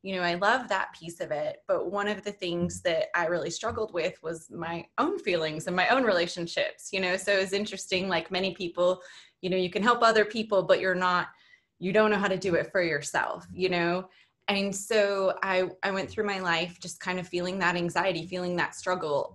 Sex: female